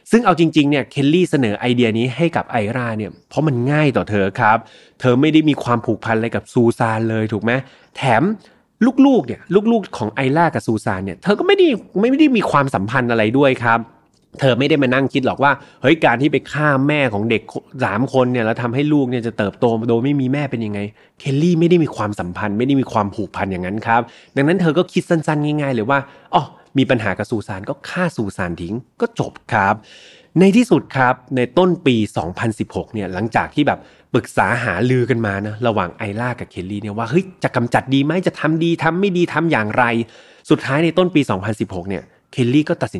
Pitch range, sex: 110-150 Hz, male